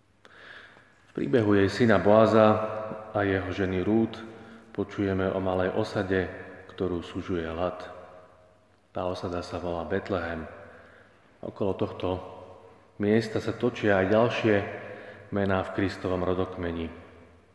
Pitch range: 90-105 Hz